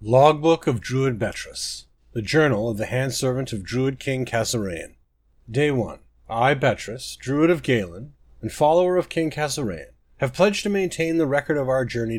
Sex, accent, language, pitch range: male, American, English, 115-155 Hz